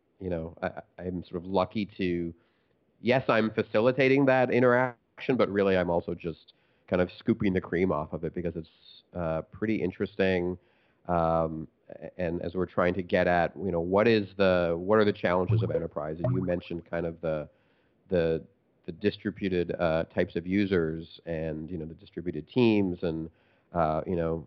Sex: male